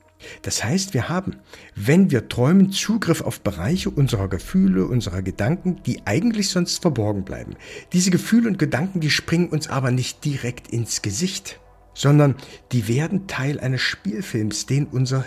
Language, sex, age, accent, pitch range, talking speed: German, male, 50-69, German, 110-155 Hz, 155 wpm